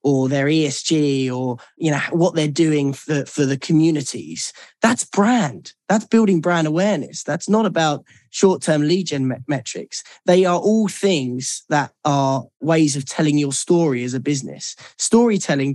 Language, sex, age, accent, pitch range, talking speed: English, male, 10-29, British, 130-160 Hz, 160 wpm